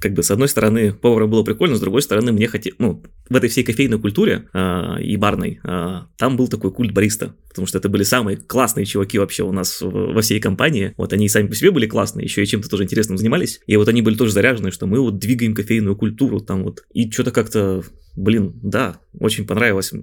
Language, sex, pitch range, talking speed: Russian, male, 100-120 Hz, 230 wpm